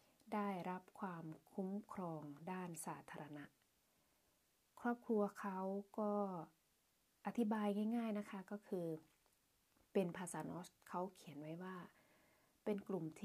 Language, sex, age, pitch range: Thai, female, 20-39, 180-210 Hz